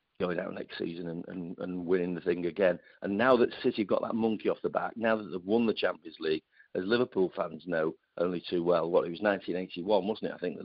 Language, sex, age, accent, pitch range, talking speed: English, male, 50-69, British, 85-110 Hz, 240 wpm